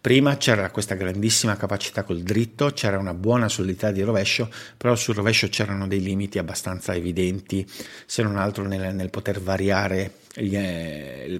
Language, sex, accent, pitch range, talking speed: Italian, male, native, 90-115 Hz, 165 wpm